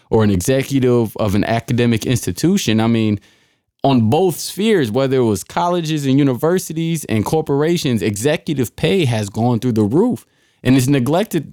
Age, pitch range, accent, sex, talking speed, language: 20-39, 105-140 Hz, American, male, 155 wpm, English